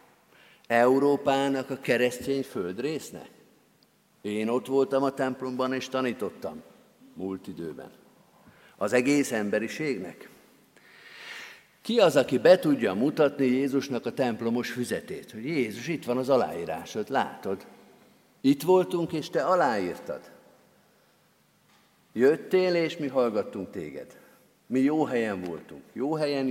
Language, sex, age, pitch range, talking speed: Hungarian, male, 50-69, 115-140 Hz, 115 wpm